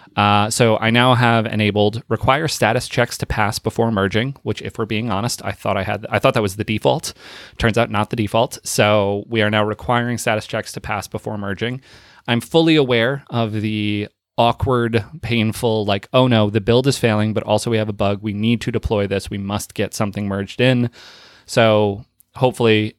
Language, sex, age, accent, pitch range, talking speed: English, male, 20-39, American, 105-120 Hz, 200 wpm